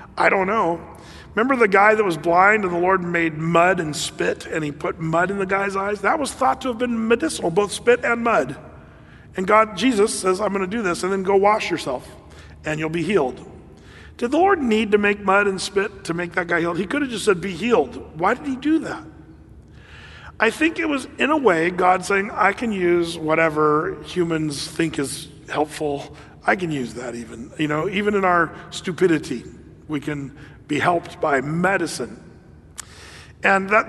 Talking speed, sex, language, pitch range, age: 200 wpm, male, English, 165-205 Hz, 40-59